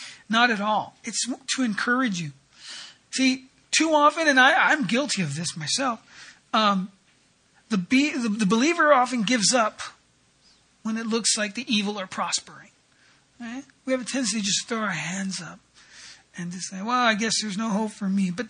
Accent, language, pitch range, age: American, English, 185-250 Hz, 40-59